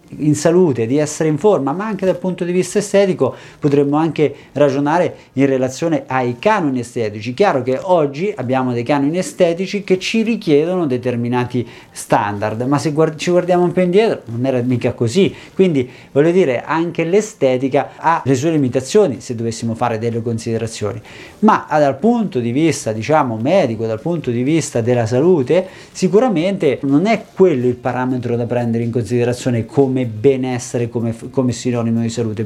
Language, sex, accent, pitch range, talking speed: Italian, male, native, 125-155 Hz, 165 wpm